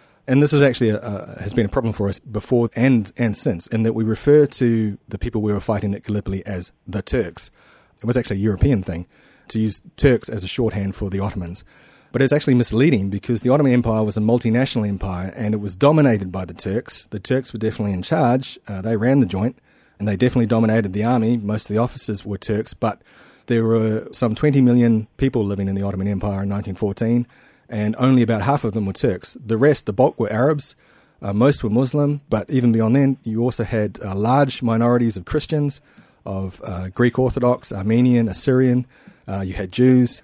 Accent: Australian